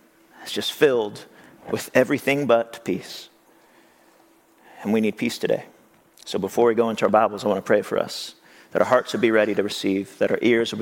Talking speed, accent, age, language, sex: 205 wpm, American, 40-59, English, male